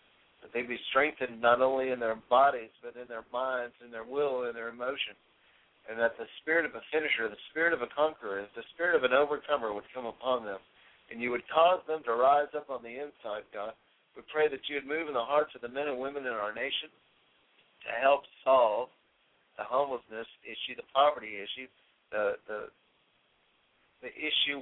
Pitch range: 125-140 Hz